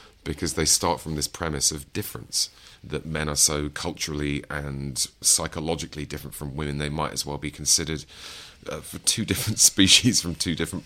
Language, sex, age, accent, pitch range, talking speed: English, male, 30-49, British, 70-85 Hz, 175 wpm